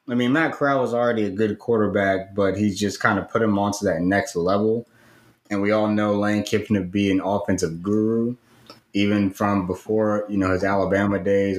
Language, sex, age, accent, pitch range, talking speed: English, male, 20-39, American, 95-115 Hz, 200 wpm